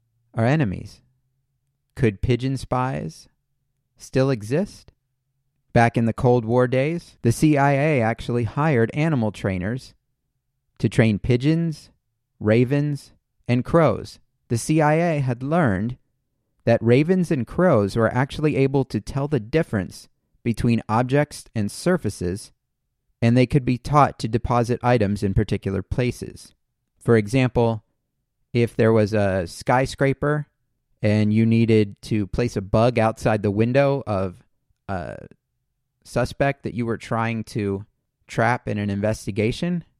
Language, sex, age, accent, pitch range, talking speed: English, male, 30-49, American, 110-135 Hz, 125 wpm